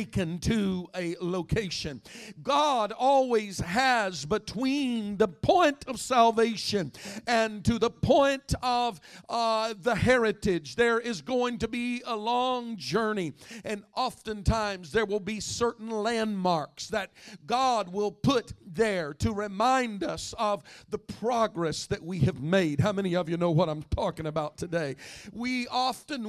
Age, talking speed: 50-69, 140 wpm